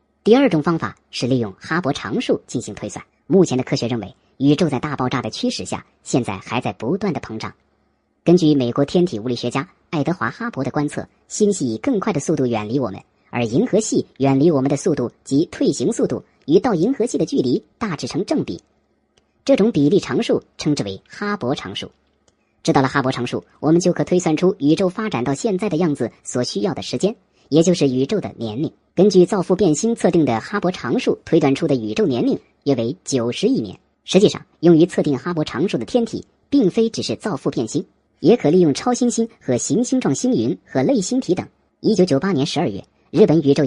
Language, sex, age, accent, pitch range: Chinese, male, 50-69, native, 125-180 Hz